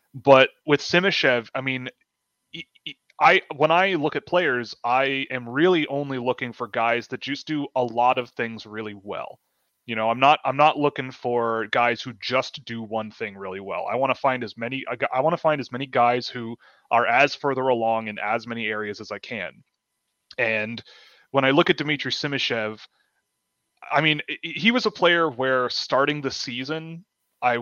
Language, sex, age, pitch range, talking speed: English, male, 30-49, 115-145 Hz, 185 wpm